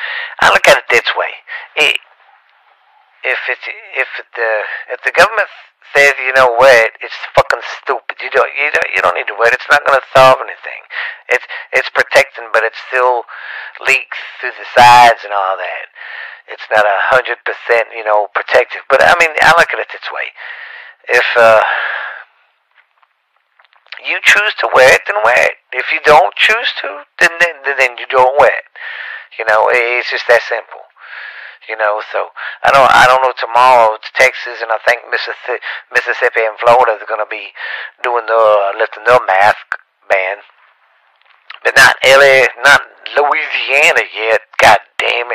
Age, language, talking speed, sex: 40-59, English, 175 wpm, male